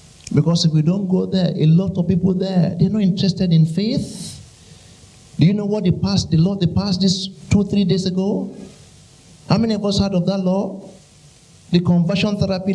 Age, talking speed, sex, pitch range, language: 60-79, 200 wpm, male, 145-185 Hz, English